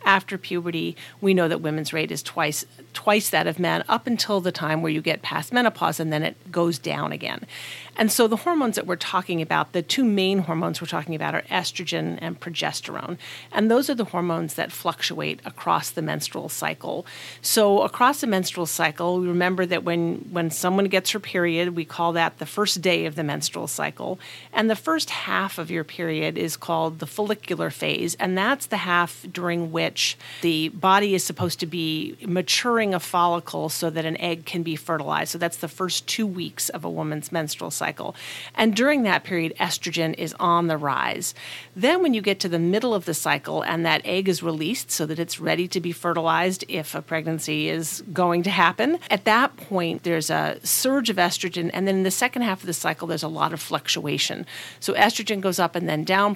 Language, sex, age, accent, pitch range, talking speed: English, female, 40-59, American, 165-195 Hz, 205 wpm